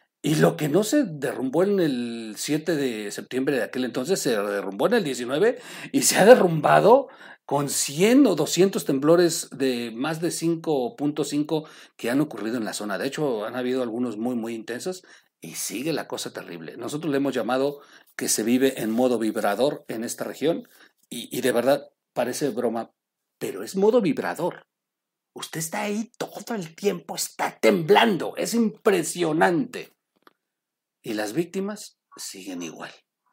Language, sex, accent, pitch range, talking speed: Spanish, male, Mexican, 140-190 Hz, 160 wpm